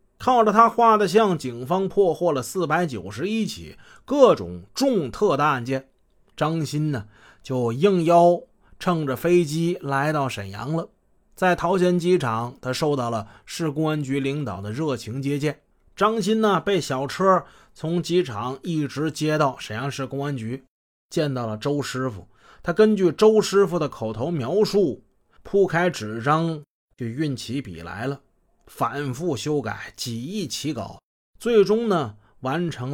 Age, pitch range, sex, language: 30-49, 125-185 Hz, male, Chinese